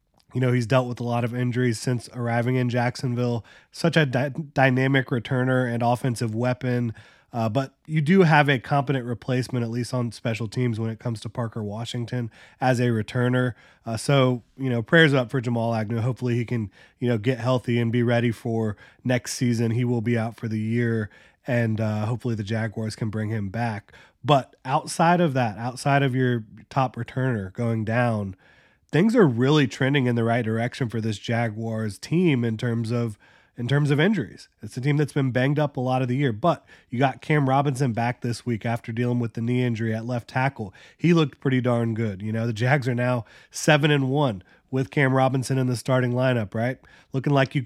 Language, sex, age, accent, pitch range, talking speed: English, male, 20-39, American, 115-135 Hz, 205 wpm